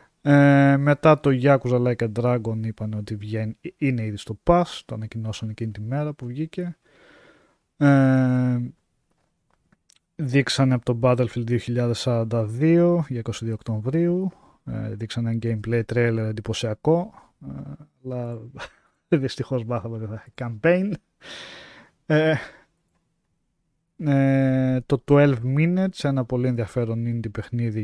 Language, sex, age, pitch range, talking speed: Greek, male, 20-39, 110-140 Hz, 90 wpm